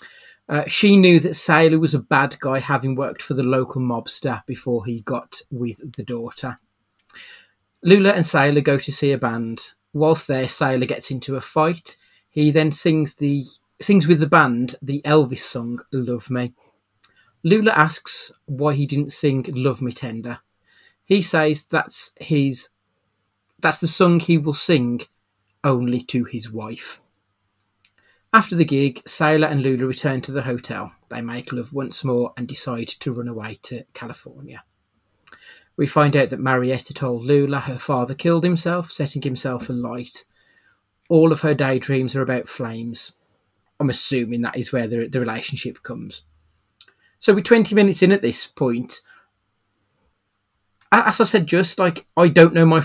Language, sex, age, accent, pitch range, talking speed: English, male, 30-49, British, 120-155 Hz, 160 wpm